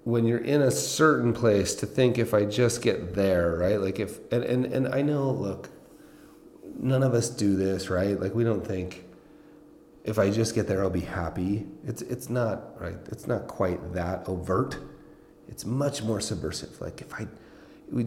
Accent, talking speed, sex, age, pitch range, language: American, 190 wpm, male, 30-49, 95-130 Hz, English